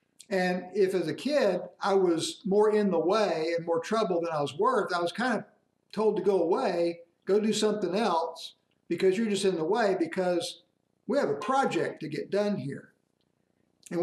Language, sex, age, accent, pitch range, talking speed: English, male, 60-79, American, 160-210 Hz, 195 wpm